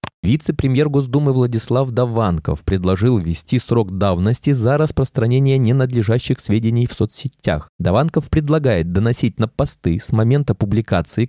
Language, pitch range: Russian, 100-135 Hz